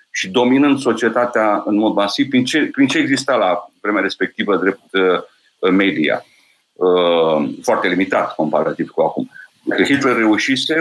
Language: Romanian